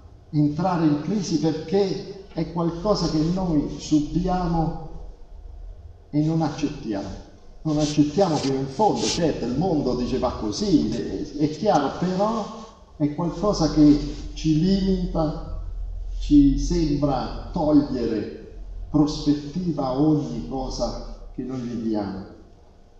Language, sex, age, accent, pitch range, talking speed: Italian, male, 50-69, native, 110-160 Hz, 105 wpm